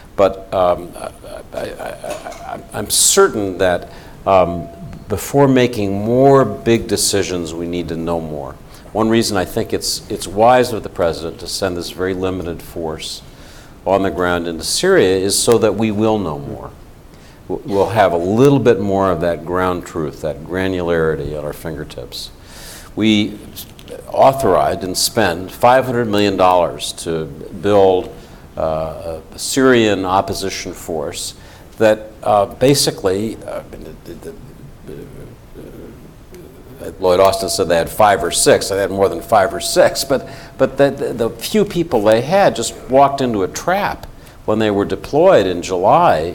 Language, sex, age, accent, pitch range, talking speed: English, male, 60-79, American, 90-115 Hz, 150 wpm